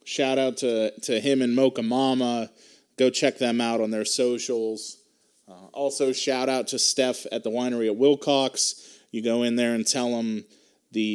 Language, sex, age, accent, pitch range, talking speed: English, male, 30-49, American, 115-135 Hz, 180 wpm